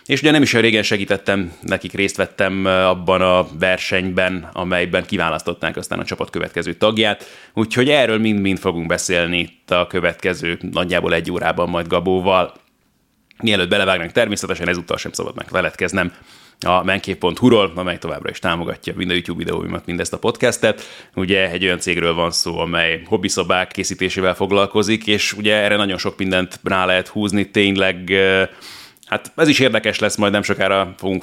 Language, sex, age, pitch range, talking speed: Hungarian, male, 30-49, 90-100 Hz, 160 wpm